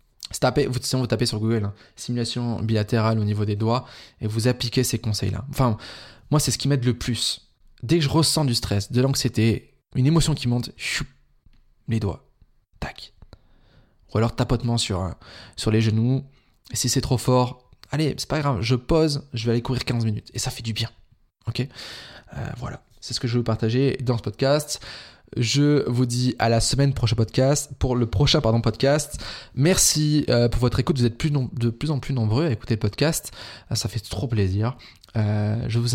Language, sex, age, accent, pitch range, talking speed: French, male, 20-39, French, 110-130 Hz, 185 wpm